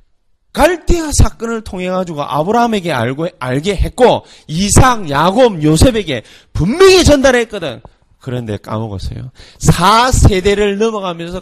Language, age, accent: Korean, 30-49, native